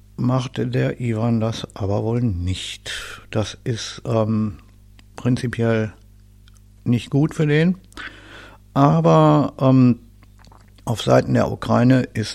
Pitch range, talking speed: 105-130 Hz, 105 wpm